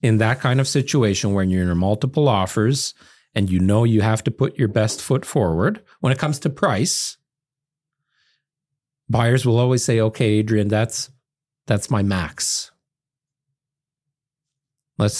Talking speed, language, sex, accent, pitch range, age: 145 wpm, English, male, American, 105-145 Hz, 40-59